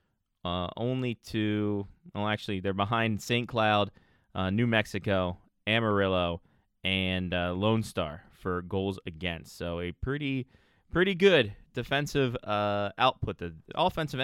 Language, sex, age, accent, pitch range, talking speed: English, male, 20-39, American, 95-120 Hz, 125 wpm